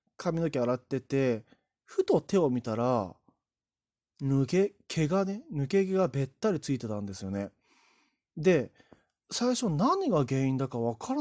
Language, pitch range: Japanese, 115-180 Hz